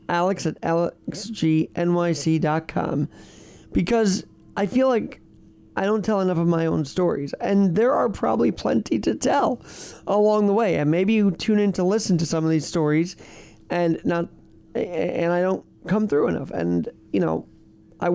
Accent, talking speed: American, 160 wpm